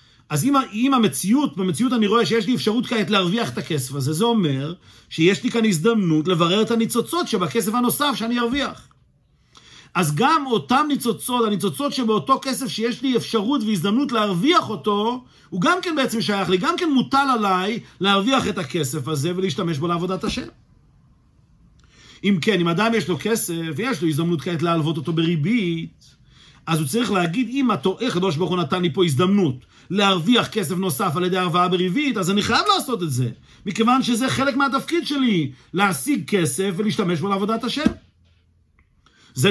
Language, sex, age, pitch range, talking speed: Hebrew, male, 50-69, 170-235 Hz, 160 wpm